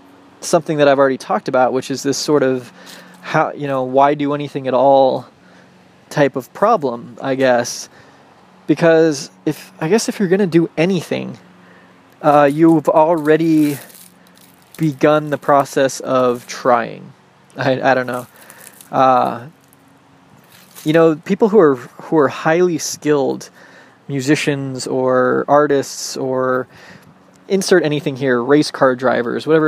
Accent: American